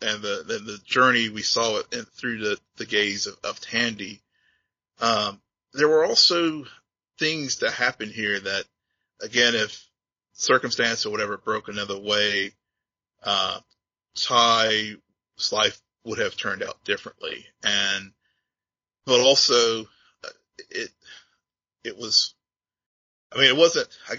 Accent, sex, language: American, male, English